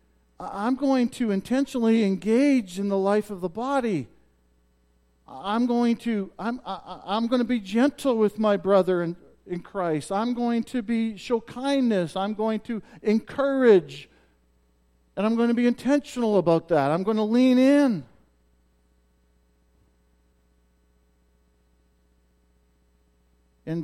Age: 50-69